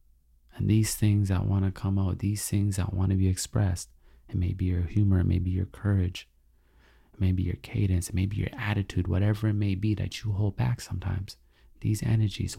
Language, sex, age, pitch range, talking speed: English, male, 30-49, 95-115 Hz, 215 wpm